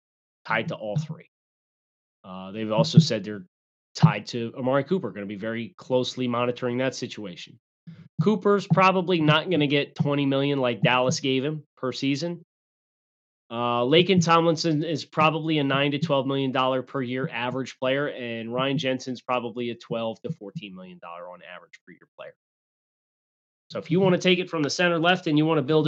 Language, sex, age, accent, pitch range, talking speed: English, male, 30-49, American, 115-155 Hz, 185 wpm